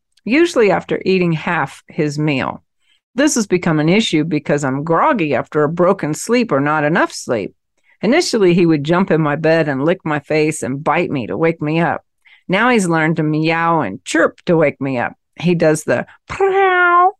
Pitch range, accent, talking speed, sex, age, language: 155-200 Hz, American, 190 wpm, female, 50-69, English